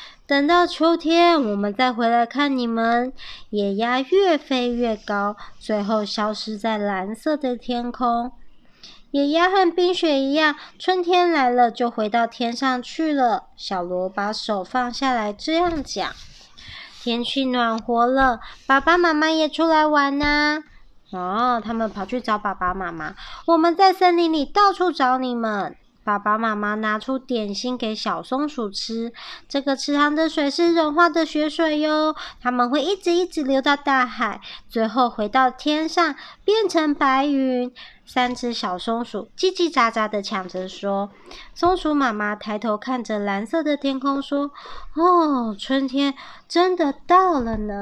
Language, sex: Chinese, male